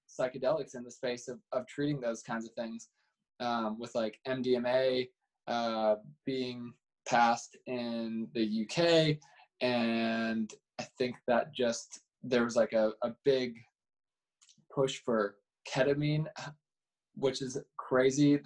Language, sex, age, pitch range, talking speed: English, male, 20-39, 125-145 Hz, 125 wpm